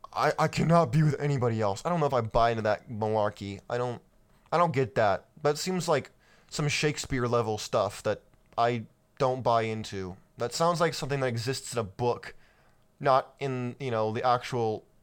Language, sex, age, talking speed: English, male, 20-39, 195 wpm